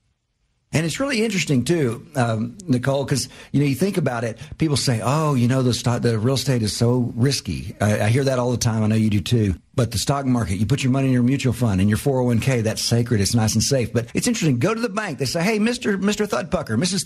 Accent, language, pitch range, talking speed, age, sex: American, English, 120-185 Hz, 260 wpm, 50-69, male